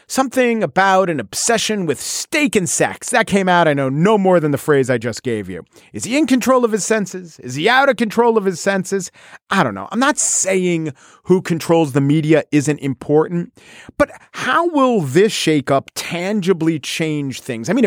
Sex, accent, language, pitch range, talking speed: male, American, English, 135-205 Hz, 200 wpm